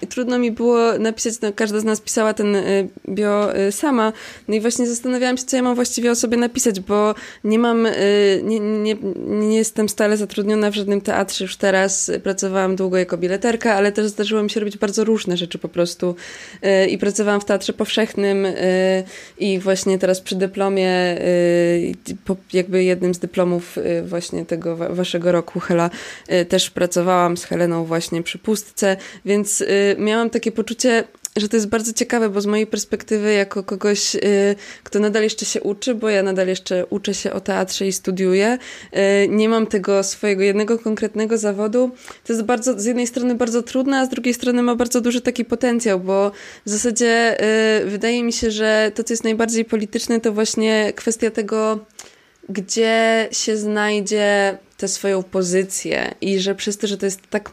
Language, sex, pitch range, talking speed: Polish, female, 195-225 Hz, 165 wpm